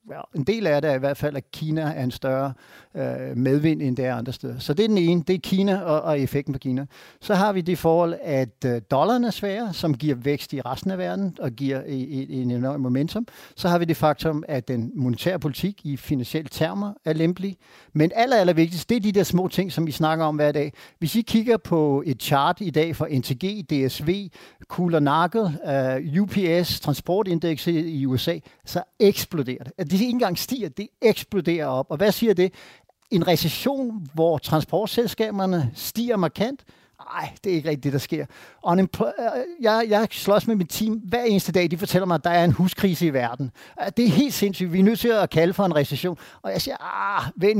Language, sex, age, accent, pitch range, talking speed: Danish, male, 60-79, native, 145-195 Hz, 215 wpm